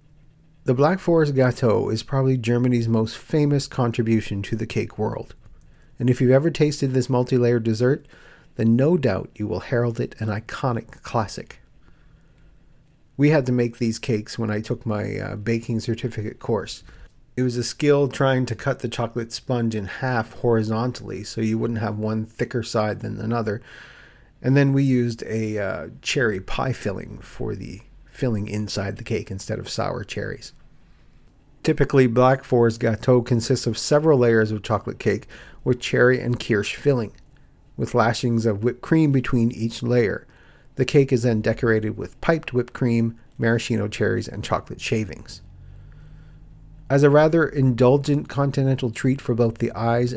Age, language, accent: 40-59, English, American